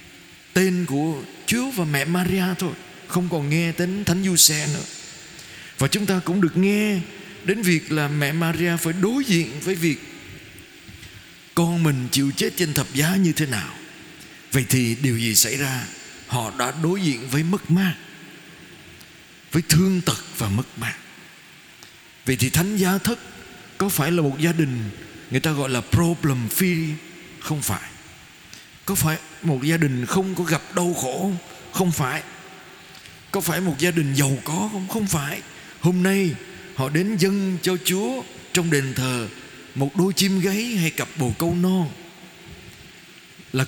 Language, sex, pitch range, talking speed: Vietnamese, male, 140-180 Hz, 170 wpm